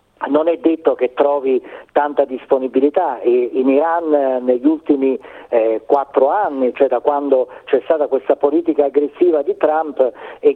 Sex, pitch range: male, 130-160 Hz